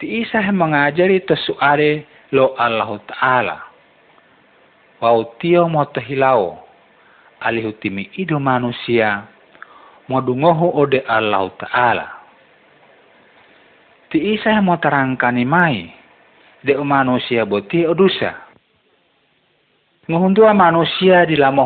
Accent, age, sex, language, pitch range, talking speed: native, 50-69, male, Indonesian, 115-165 Hz, 80 wpm